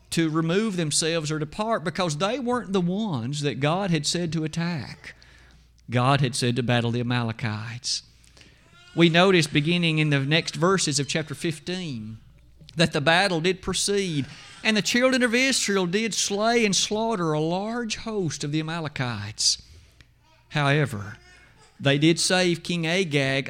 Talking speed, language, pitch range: 150 wpm, English, 130-180 Hz